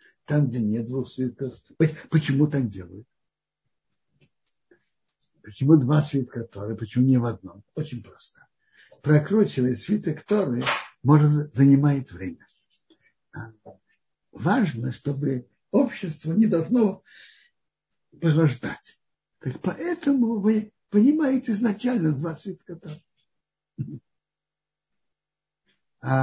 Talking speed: 85 wpm